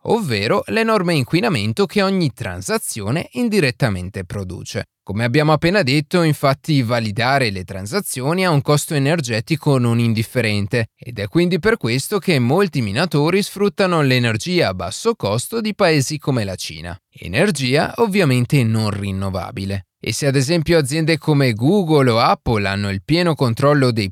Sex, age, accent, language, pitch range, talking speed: male, 20-39, native, Italian, 110-165 Hz, 145 wpm